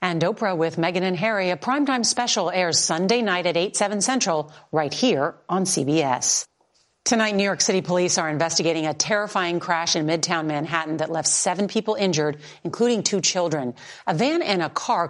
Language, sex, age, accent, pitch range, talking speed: English, female, 40-59, American, 155-195 Hz, 185 wpm